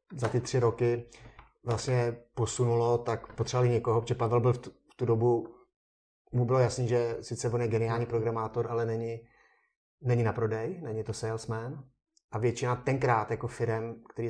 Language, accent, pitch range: Czech, native, 115-130 Hz